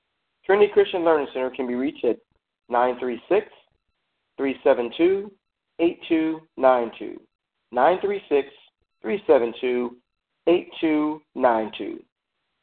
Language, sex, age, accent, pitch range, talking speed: English, male, 40-59, American, 125-190 Hz, 50 wpm